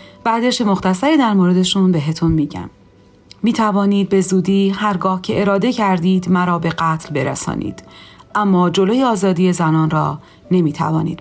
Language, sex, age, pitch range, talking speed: Persian, female, 40-59, 155-205 Hz, 125 wpm